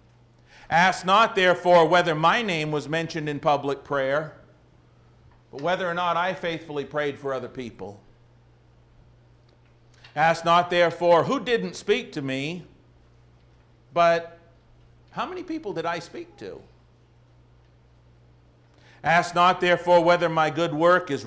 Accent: American